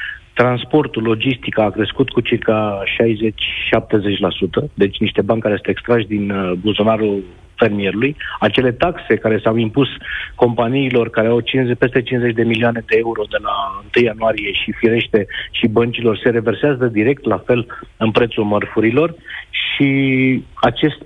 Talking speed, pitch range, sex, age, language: 135 wpm, 115-135 Hz, male, 40-59, Romanian